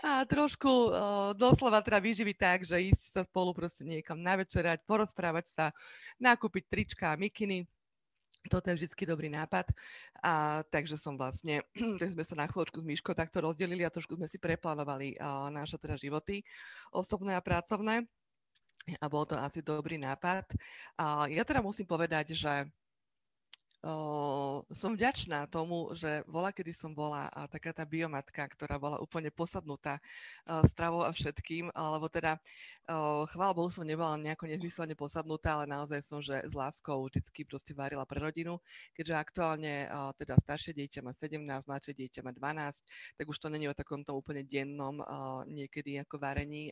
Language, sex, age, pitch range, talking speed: Slovak, female, 30-49, 145-175 Hz, 160 wpm